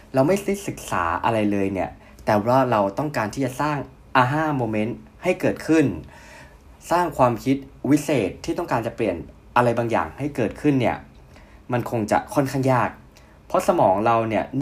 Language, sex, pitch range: Thai, male, 100-135 Hz